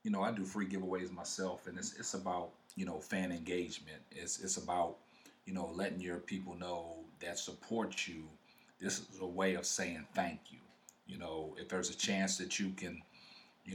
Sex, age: male, 40-59